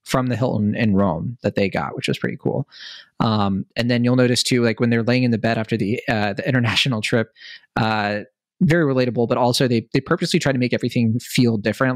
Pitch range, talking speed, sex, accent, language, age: 105-130 Hz, 225 wpm, male, American, English, 20-39